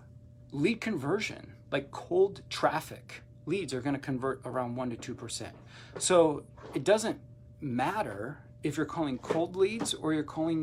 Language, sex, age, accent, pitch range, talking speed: English, male, 40-59, American, 120-160 Hz, 140 wpm